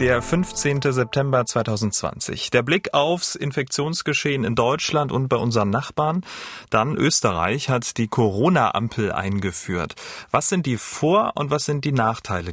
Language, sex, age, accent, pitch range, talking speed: German, male, 30-49, German, 110-150 Hz, 140 wpm